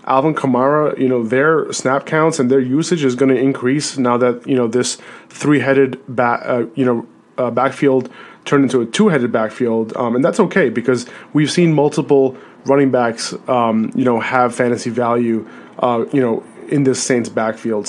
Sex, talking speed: male, 185 wpm